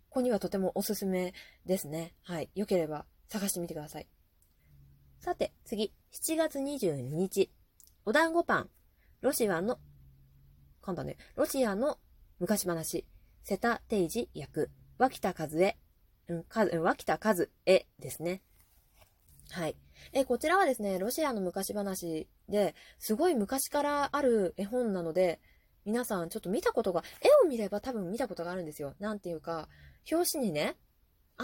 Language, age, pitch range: Japanese, 20-39, 165-250 Hz